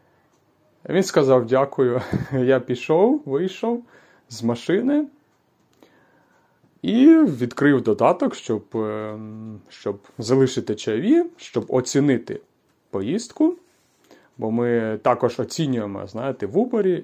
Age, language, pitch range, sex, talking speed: 30-49, Ukrainian, 115-195 Hz, male, 90 wpm